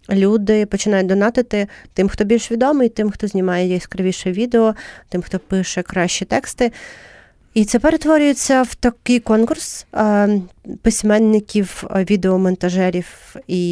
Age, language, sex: 30-49, Ukrainian, female